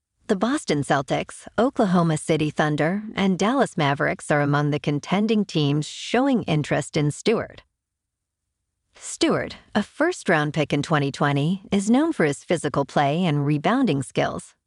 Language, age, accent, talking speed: English, 50-69, American, 140 wpm